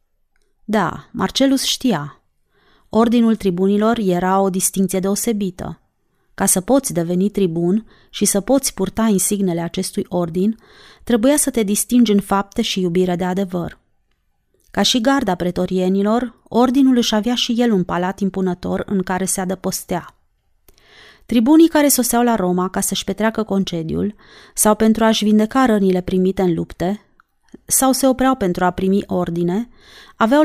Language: Romanian